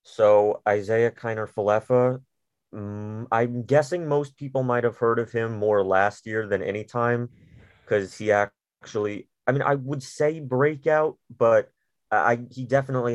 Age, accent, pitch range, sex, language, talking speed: 30-49, American, 100-130 Hz, male, English, 150 wpm